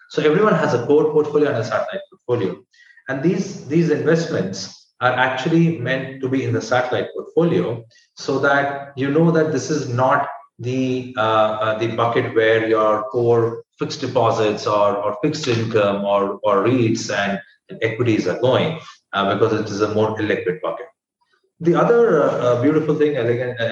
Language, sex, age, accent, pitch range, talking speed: English, male, 30-49, Indian, 110-145 Hz, 170 wpm